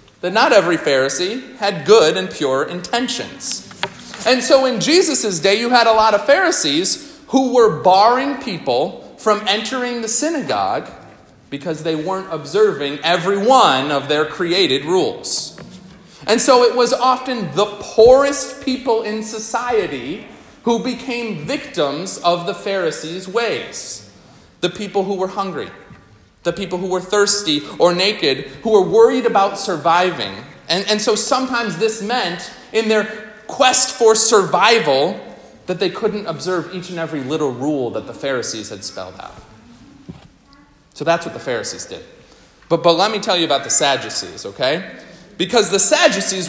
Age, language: 40-59, English